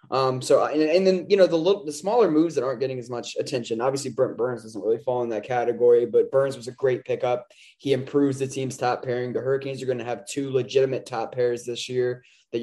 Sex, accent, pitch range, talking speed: male, American, 125-165 Hz, 240 wpm